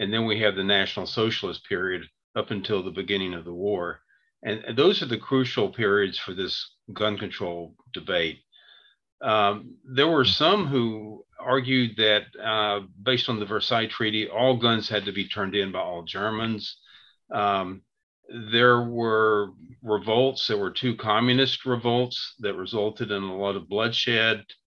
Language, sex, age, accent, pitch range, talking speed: English, male, 50-69, American, 100-115 Hz, 160 wpm